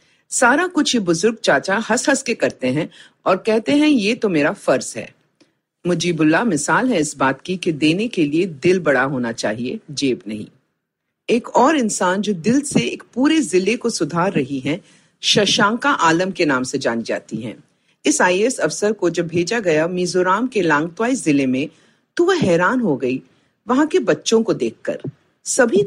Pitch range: 165-255 Hz